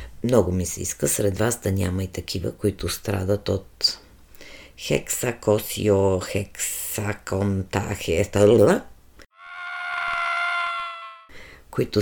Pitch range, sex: 95-160 Hz, female